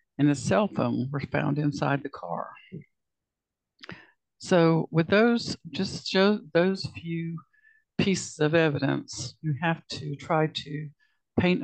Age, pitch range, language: 60-79, 145-165 Hz, English